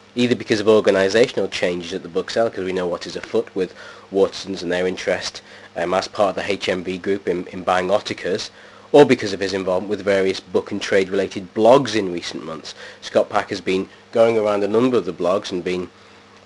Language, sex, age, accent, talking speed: English, male, 30-49, British, 210 wpm